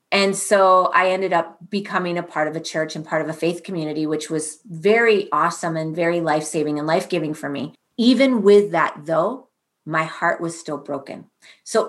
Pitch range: 165-210 Hz